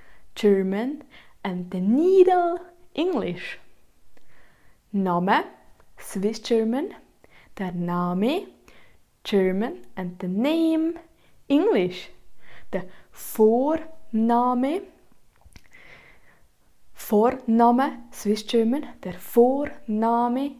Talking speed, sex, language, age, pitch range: 65 wpm, female, English, 20-39, 205-280 Hz